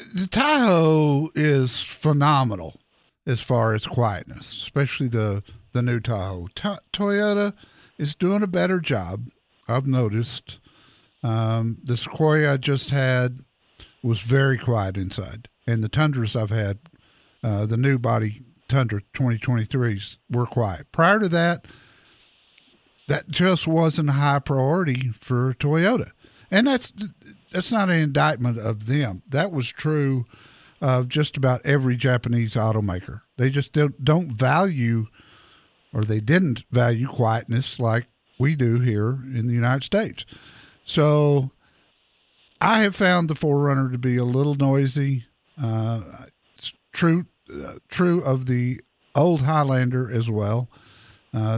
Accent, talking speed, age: American, 130 wpm, 60-79